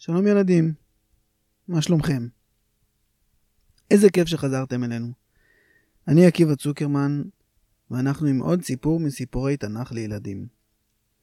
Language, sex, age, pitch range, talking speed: Hebrew, male, 20-39, 120-155 Hz, 95 wpm